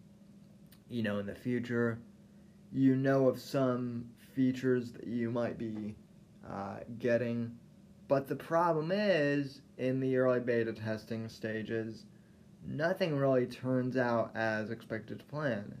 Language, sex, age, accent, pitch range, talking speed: English, male, 20-39, American, 115-170 Hz, 130 wpm